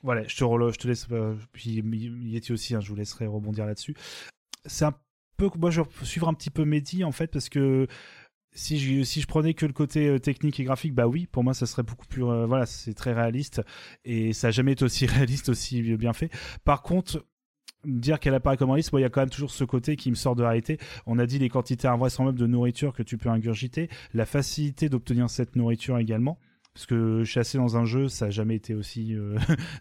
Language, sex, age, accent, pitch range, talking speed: French, male, 30-49, French, 115-140 Hz, 240 wpm